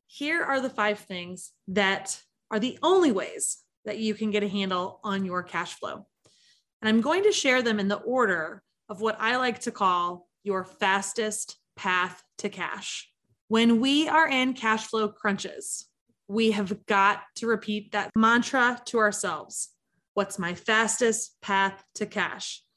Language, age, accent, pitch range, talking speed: English, 20-39, American, 205-295 Hz, 165 wpm